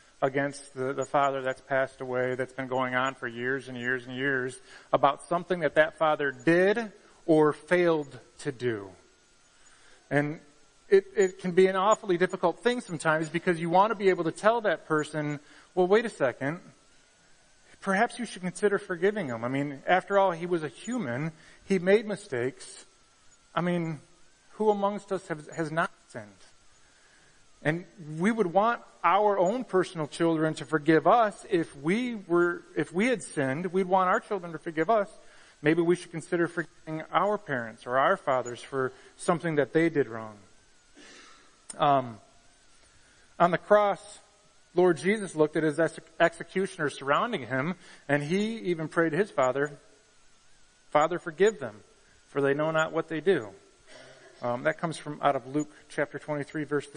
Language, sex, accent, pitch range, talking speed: English, male, American, 140-190 Hz, 165 wpm